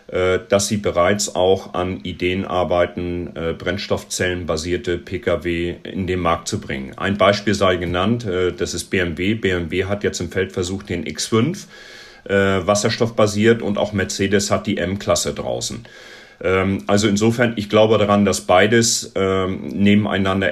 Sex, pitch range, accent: male, 90-110 Hz, German